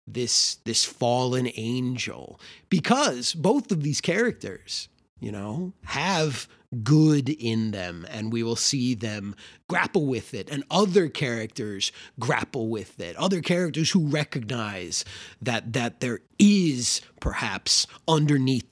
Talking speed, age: 125 wpm, 30-49